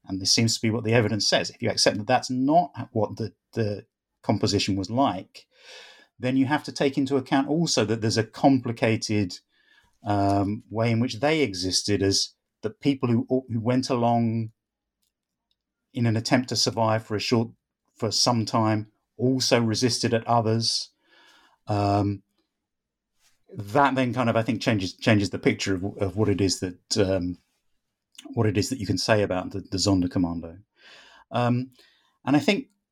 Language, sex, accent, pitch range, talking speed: English, male, British, 100-125 Hz, 175 wpm